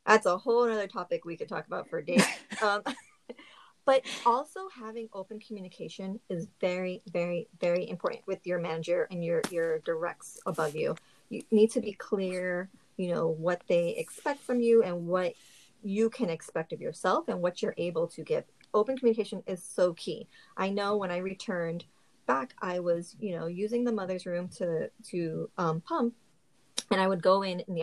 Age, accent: 30-49, American